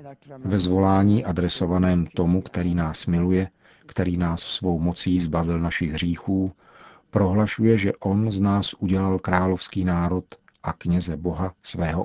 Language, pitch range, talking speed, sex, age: Czech, 90-100 Hz, 130 wpm, male, 40-59